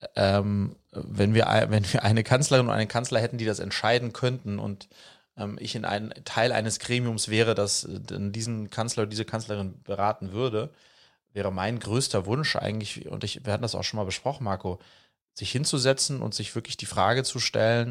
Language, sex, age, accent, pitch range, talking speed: German, male, 30-49, German, 105-130 Hz, 190 wpm